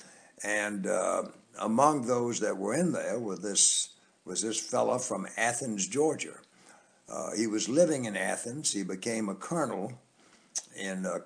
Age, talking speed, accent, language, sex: 60-79, 150 wpm, American, English, male